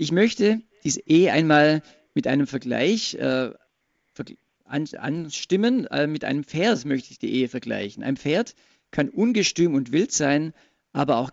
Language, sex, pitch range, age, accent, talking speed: German, male, 135-190 Hz, 50-69, German, 155 wpm